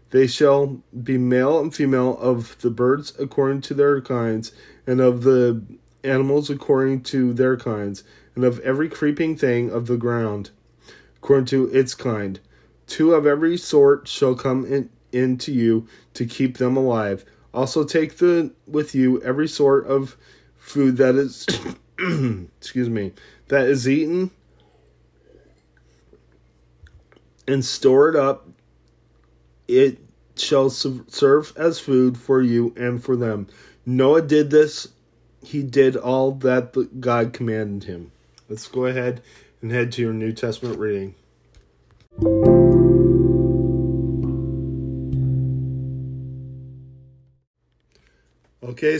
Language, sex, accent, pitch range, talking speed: English, male, American, 110-135 Hz, 120 wpm